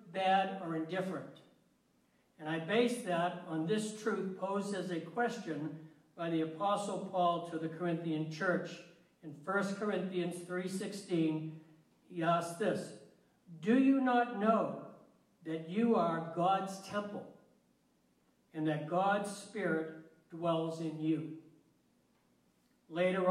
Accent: American